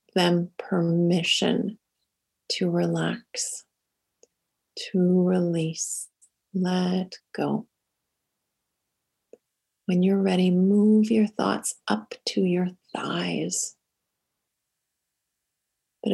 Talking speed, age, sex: 70 wpm, 30-49, female